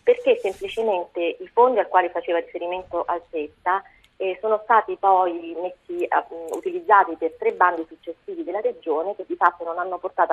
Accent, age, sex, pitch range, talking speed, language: native, 40-59, female, 170-205 Hz, 155 wpm, Italian